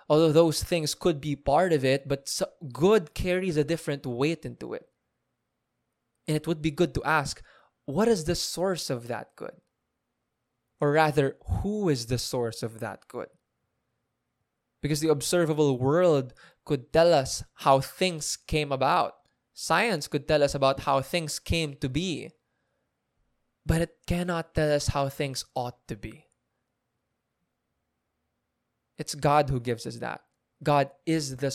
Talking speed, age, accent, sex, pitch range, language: 150 wpm, 20-39, Filipino, male, 125-155 Hz, English